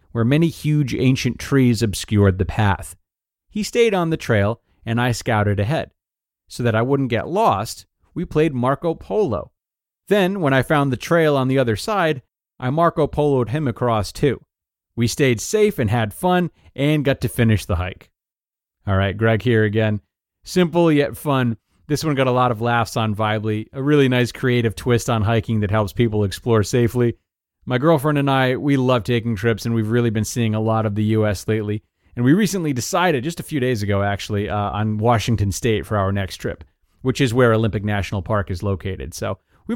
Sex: male